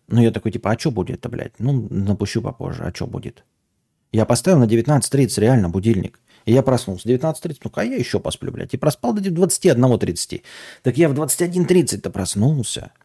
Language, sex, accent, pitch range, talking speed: Russian, male, native, 105-135 Hz, 175 wpm